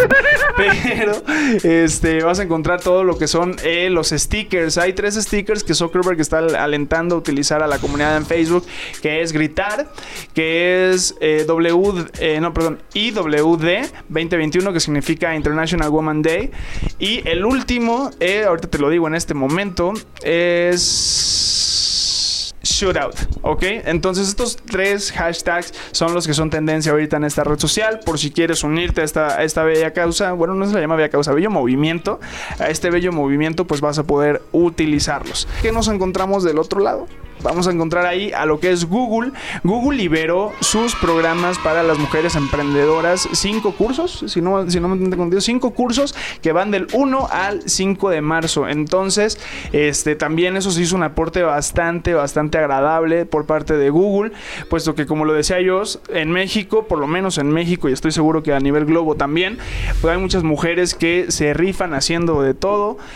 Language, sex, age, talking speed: Spanish, male, 20-39, 170 wpm